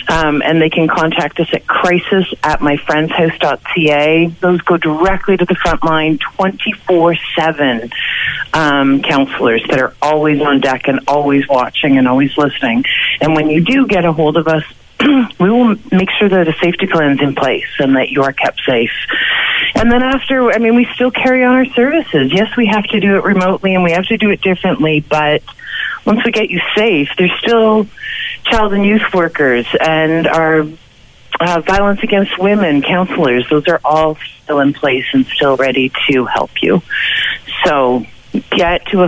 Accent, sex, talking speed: American, female, 180 wpm